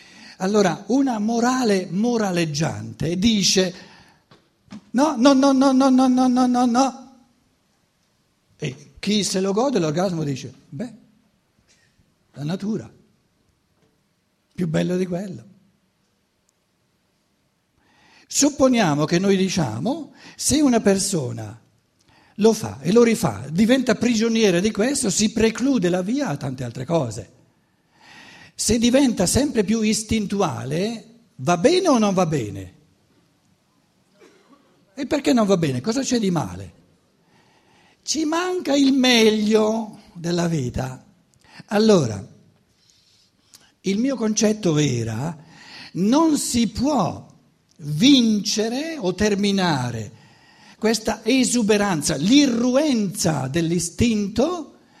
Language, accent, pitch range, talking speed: Italian, native, 165-240 Hz, 105 wpm